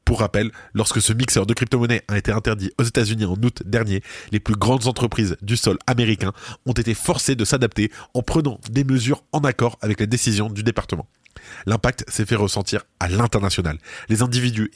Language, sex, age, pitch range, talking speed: French, male, 20-39, 100-125 Hz, 190 wpm